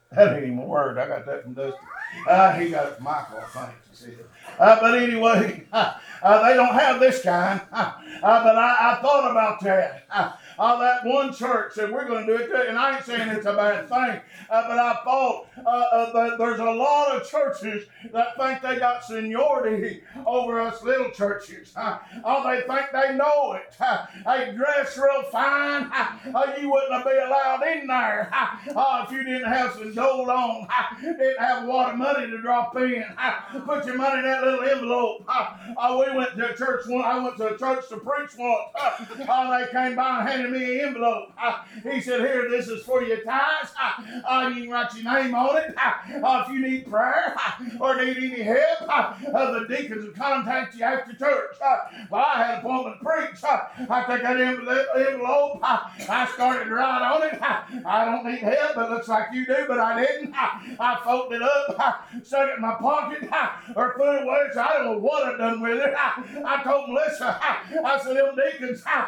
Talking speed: 210 wpm